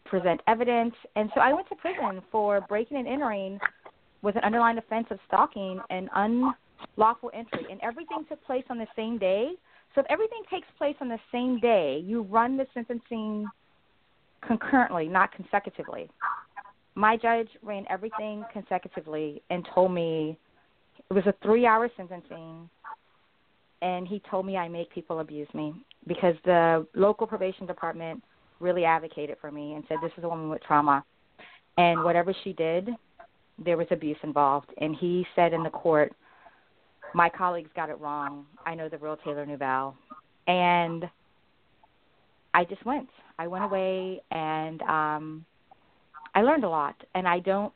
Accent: American